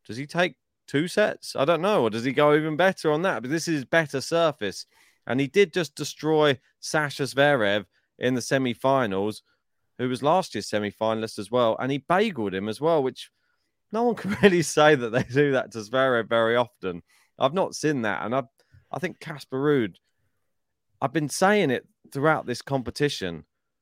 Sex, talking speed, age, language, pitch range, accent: male, 185 wpm, 20-39, English, 110-145 Hz, British